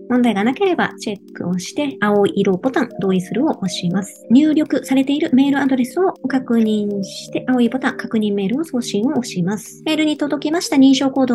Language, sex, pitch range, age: Japanese, male, 205-280 Hz, 40-59